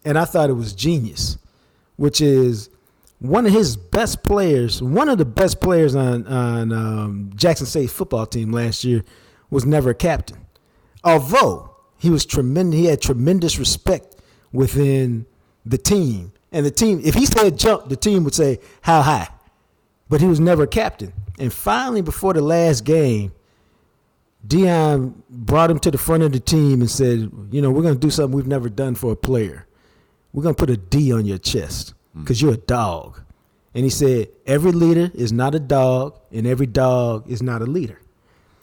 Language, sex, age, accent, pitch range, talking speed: English, male, 50-69, American, 120-165 Hz, 185 wpm